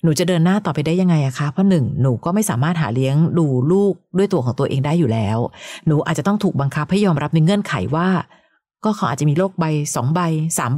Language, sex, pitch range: Thai, female, 150-190 Hz